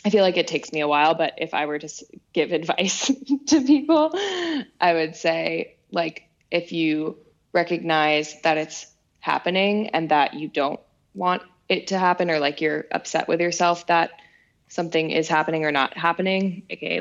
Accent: American